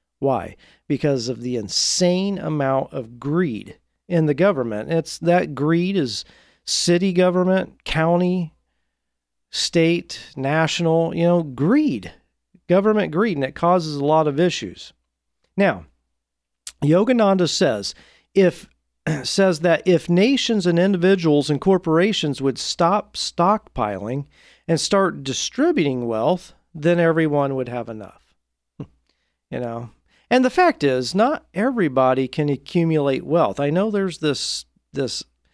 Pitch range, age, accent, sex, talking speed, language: 125-175 Hz, 40-59, American, male, 120 wpm, English